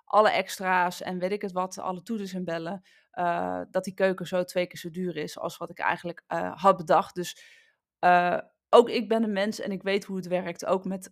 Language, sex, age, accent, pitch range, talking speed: Dutch, female, 20-39, Dutch, 180-220 Hz, 230 wpm